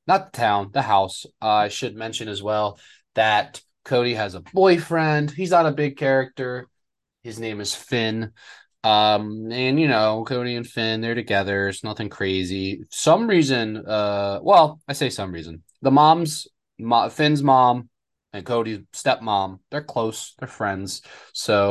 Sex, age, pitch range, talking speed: male, 20-39, 105-150 Hz, 160 wpm